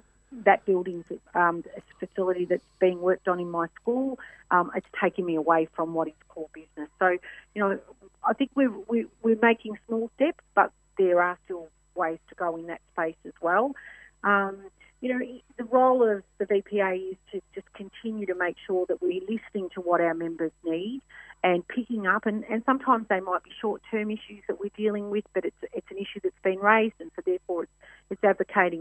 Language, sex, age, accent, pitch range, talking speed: English, female, 40-59, Australian, 165-210 Hz, 200 wpm